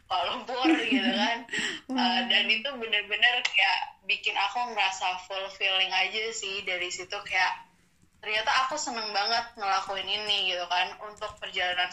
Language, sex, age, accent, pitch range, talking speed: Indonesian, female, 10-29, native, 190-240 Hz, 140 wpm